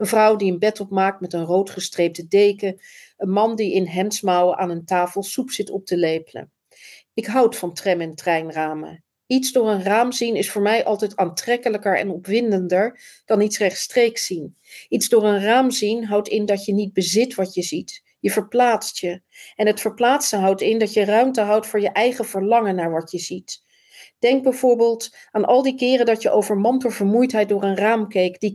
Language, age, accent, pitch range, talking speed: Dutch, 40-59, Dutch, 190-230 Hz, 200 wpm